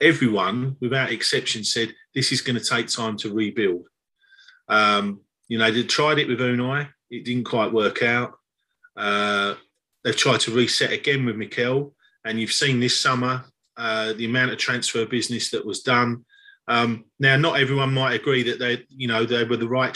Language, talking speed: Arabic, 185 wpm